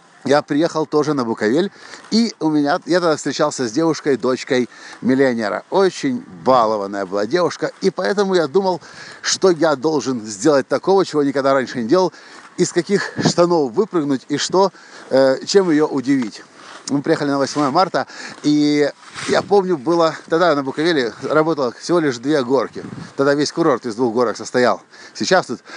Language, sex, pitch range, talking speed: Russian, male, 130-175 Hz, 160 wpm